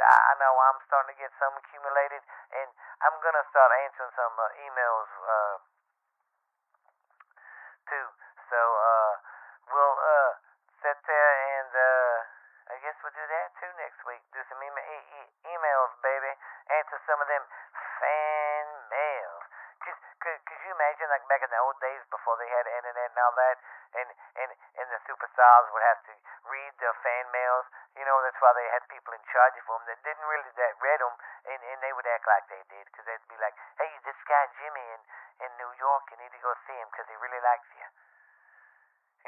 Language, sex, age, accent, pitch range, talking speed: English, male, 40-59, American, 120-150 Hz, 185 wpm